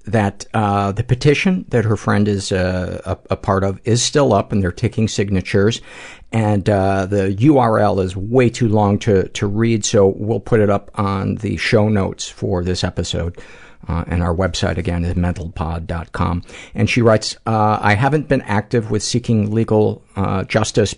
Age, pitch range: 50-69, 95-115 Hz